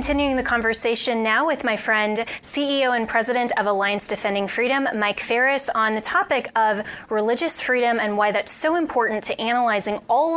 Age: 20-39